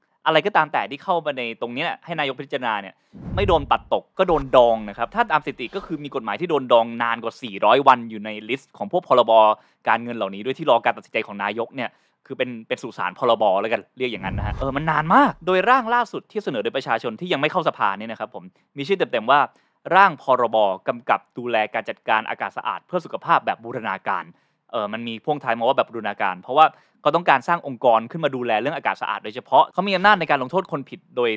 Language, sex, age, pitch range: Thai, male, 20-39, 115-160 Hz